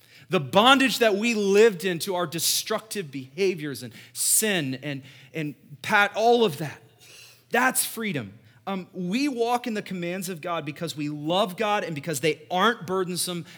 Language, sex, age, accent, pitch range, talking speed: English, male, 30-49, American, 125-190 Hz, 165 wpm